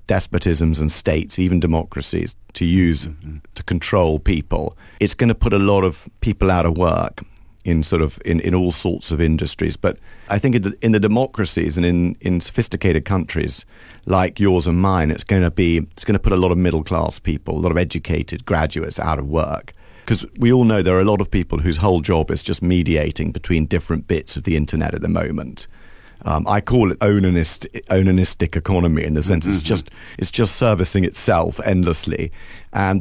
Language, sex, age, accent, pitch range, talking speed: English, male, 40-59, British, 80-95 Hz, 200 wpm